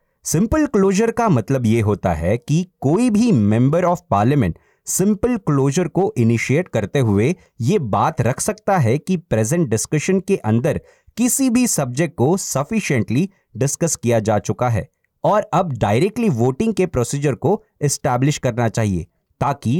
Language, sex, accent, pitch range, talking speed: Hindi, male, native, 115-185 Hz, 150 wpm